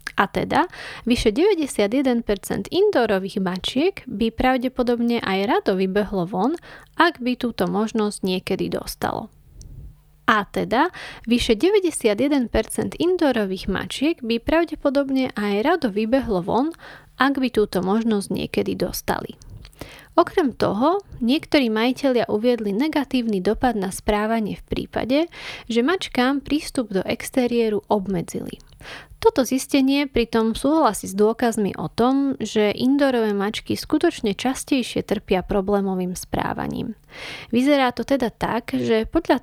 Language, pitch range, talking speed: Slovak, 210-275 Hz, 115 wpm